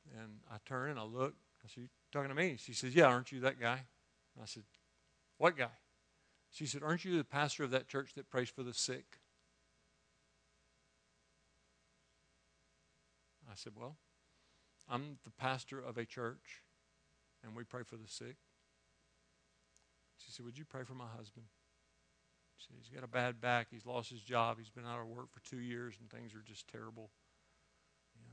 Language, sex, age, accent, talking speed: English, male, 50-69, American, 180 wpm